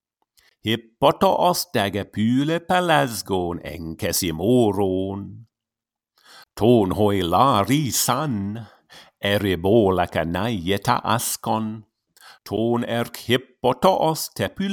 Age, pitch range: 50-69, 105-145 Hz